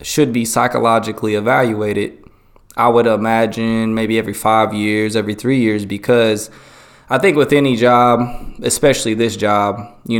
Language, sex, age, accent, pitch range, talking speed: English, male, 20-39, American, 105-130 Hz, 140 wpm